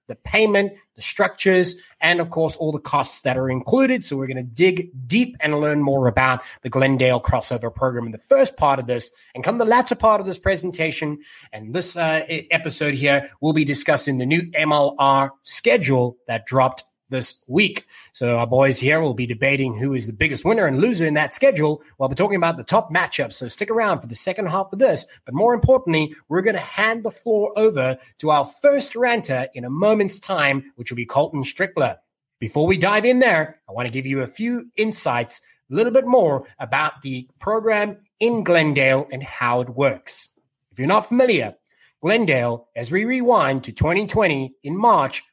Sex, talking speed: male, 200 wpm